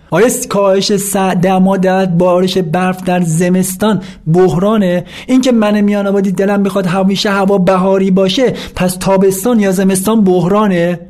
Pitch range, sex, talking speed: 185-230 Hz, male, 125 wpm